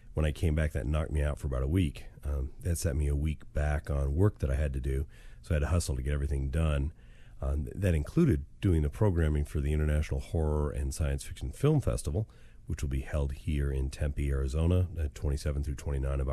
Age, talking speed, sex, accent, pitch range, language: 40-59, 235 wpm, male, American, 70-85 Hz, English